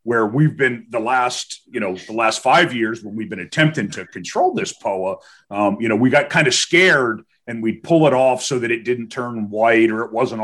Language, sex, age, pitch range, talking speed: English, male, 40-59, 110-155 Hz, 235 wpm